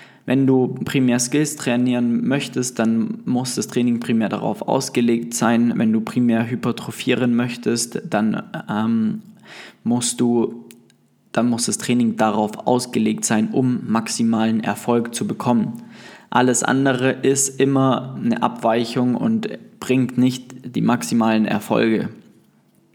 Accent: German